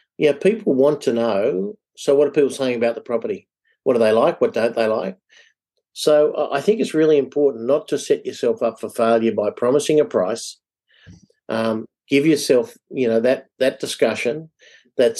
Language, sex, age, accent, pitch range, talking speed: English, male, 50-69, Australian, 115-150 Hz, 195 wpm